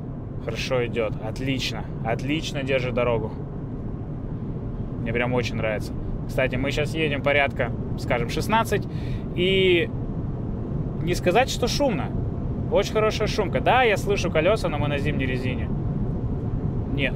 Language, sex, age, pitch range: Russian, male, 20-39, 125-145 Hz